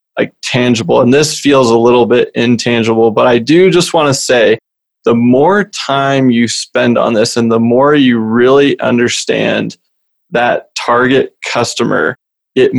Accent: American